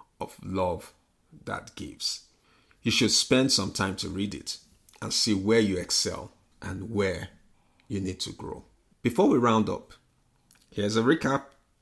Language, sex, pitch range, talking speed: English, male, 95-125 Hz, 145 wpm